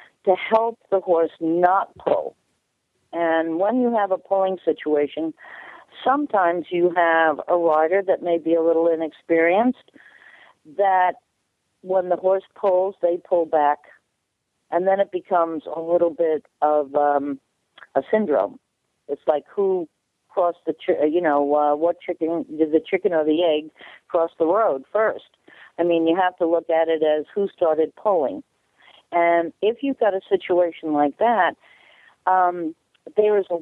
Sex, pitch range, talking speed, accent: female, 160-200 Hz, 155 wpm, American